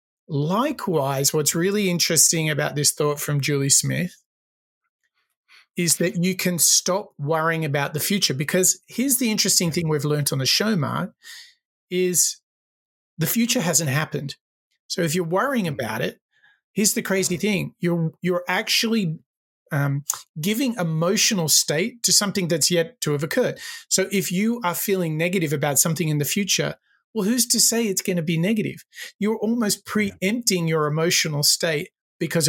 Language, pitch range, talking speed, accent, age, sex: English, 150-205 Hz, 160 wpm, Australian, 30-49, male